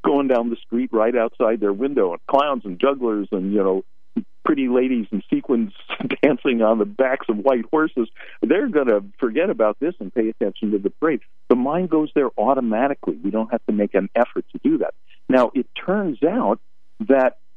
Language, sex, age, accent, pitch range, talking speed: English, male, 50-69, American, 90-125 Hz, 200 wpm